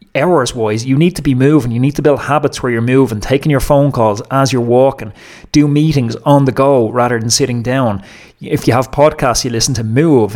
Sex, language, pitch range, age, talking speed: male, English, 120-145 Hz, 30-49, 220 wpm